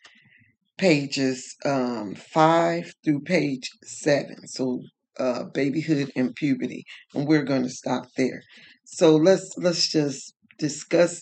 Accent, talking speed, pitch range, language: American, 120 wpm, 135-170 Hz, English